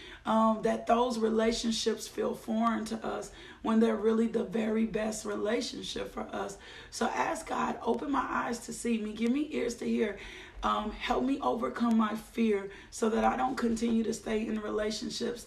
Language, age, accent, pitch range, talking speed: English, 30-49, American, 220-235 Hz, 180 wpm